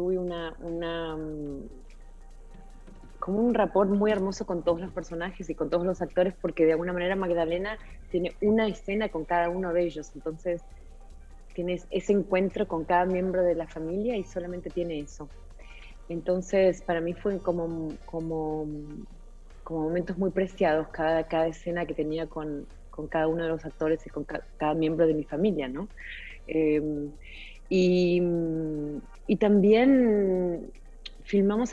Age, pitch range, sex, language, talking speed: 30-49, 165-190 Hz, female, Spanish, 150 wpm